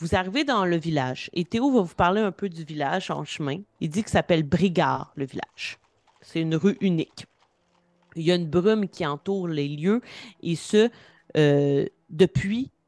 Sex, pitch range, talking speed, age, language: female, 145-175 Hz, 185 wpm, 30-49, French